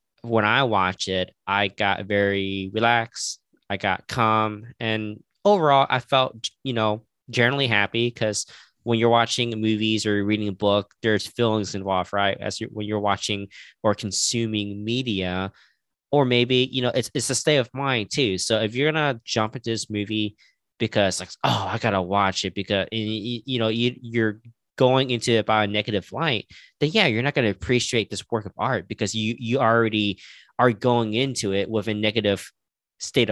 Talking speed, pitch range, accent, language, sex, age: 185 wpm, 105-130 Hz, American, English, male, 20-39